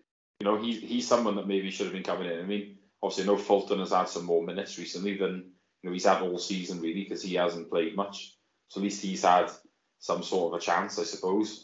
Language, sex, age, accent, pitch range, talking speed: English, male, 20-39, British, 95-105 Hz, 245 wpm